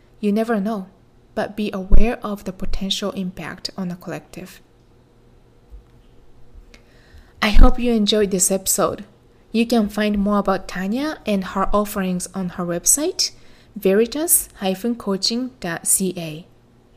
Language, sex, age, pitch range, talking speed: English, female, 20-39, 185-225 Hz, 115 wpm